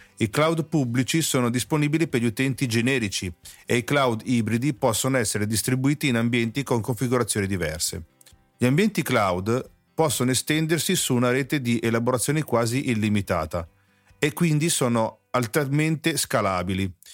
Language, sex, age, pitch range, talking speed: Italian, male, 40-59, 105-140 Hz, 135 wpm